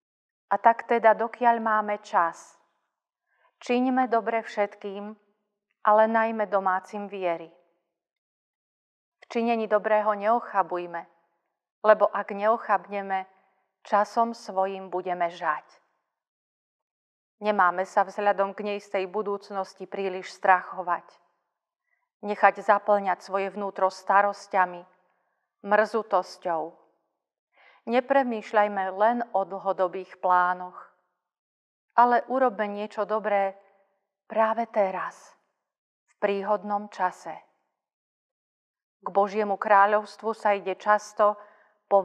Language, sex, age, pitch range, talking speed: Slovak, female, 40-59, 185-215 Hz, 85 wpm